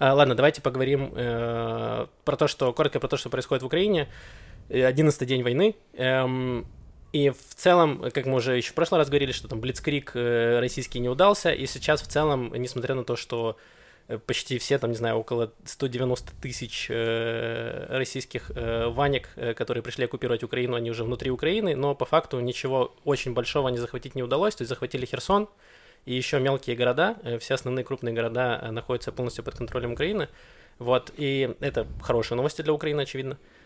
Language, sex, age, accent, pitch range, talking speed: Russian, male, 20-39, native, 120-135 Hz, 175 wpm